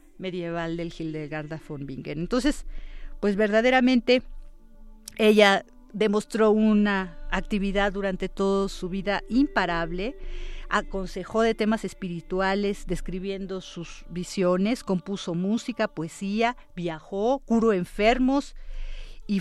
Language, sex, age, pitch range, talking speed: Spanish, female, 40-59, 185-230 Hz, 95 wpm